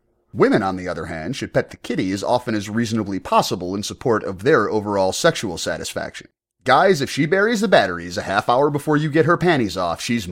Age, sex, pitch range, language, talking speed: 30-49, male, 100-135 Hz, English, 215 wpm